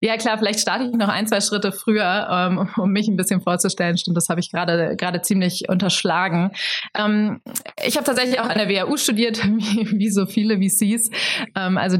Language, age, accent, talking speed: German, 20-39, German, 185 wpm